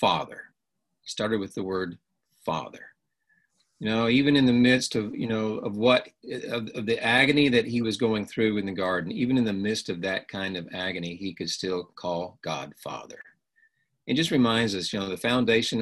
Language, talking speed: English, 200 wpm